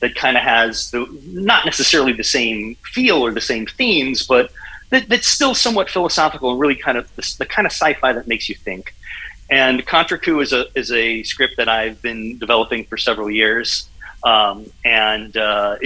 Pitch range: 105-130 Hz